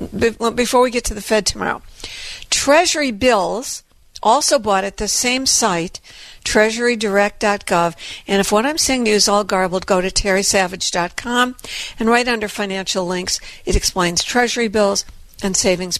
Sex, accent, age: female, American, 60-79